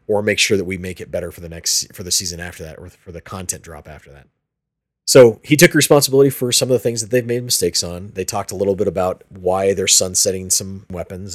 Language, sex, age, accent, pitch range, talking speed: English, male, 30-49, American, 90-115 Hz, 255 wpm